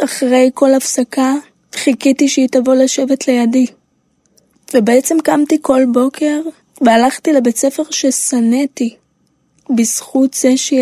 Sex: female